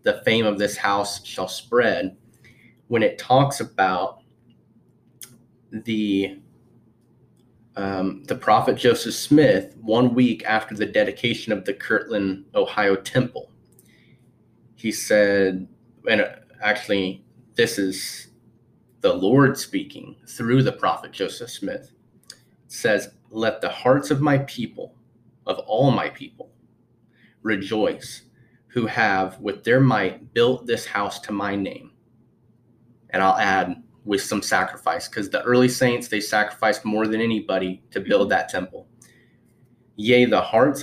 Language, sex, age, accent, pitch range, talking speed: English, male, 30-49, American, 100-125 Hz, 125 wpm